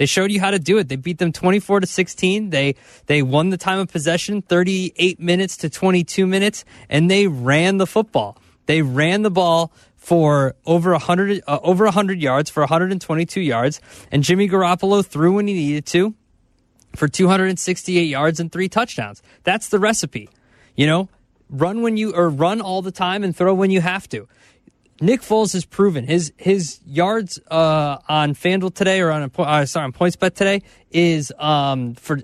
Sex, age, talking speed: male, 20-39, 185 wpm